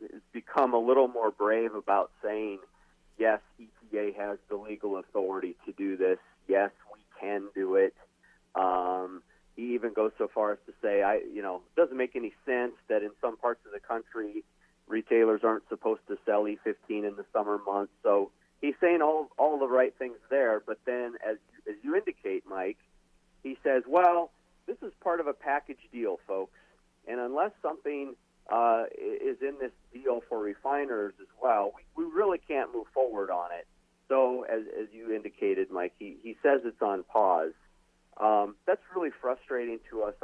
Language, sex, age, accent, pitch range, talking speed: English, male, 50-69, American, 105-140 Hz, 180 wpm